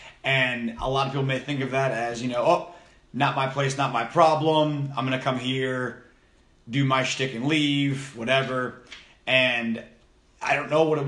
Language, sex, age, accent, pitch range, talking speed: English, male, 30-49, American, 120-140 Hz, 195 wpm